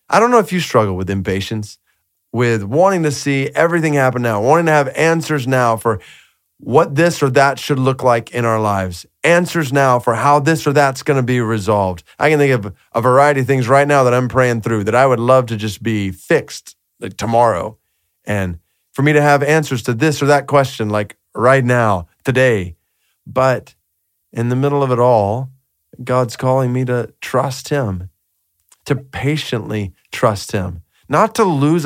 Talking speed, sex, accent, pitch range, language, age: 190 wpm, male, American, 115-140 Hz, English, 30-49